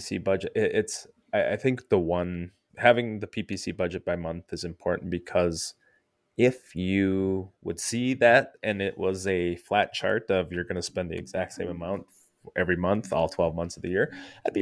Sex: male